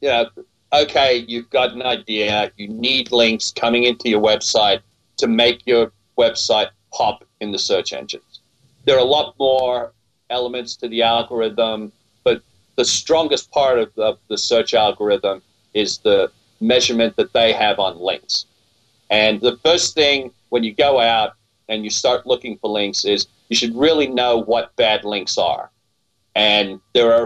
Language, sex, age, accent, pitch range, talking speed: English, male, 40-59, American, 110-135 Hz, 165 wpm